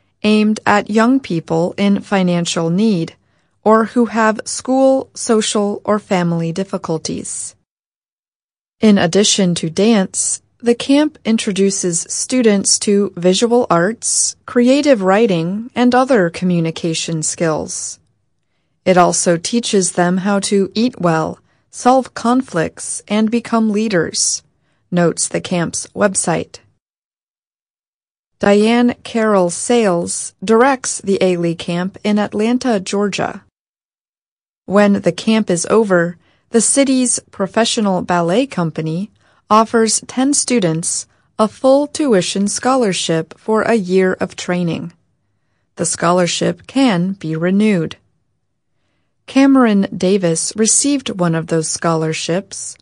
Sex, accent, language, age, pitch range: female, American, Chinese, 30-49, 175-230 Hz